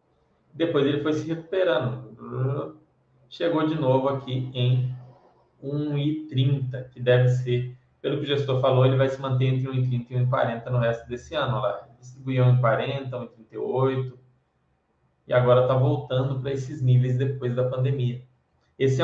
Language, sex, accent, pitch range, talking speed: Portuguese, male, Brazilian, 125-135 Hz, 150 wpm